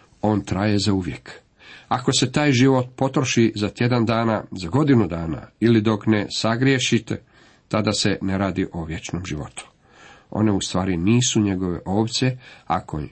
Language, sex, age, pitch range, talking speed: Croatian, male, 50-69, 100-130 Hz, 150 wpm